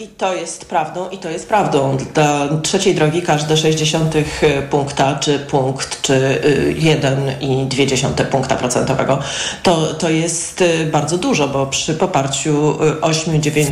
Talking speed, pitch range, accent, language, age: 130 wpm, 155-225 Hz, native, Polish, 30-49